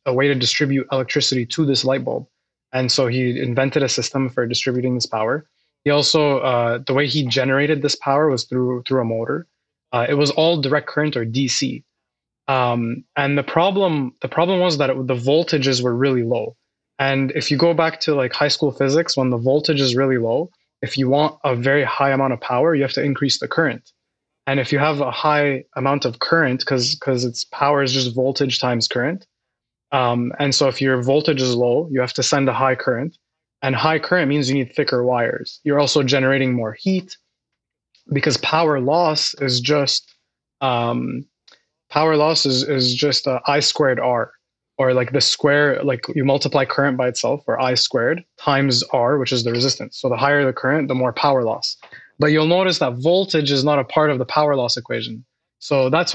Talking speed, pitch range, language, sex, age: 205 wpm, 125-150 Hz, English, male, 20-39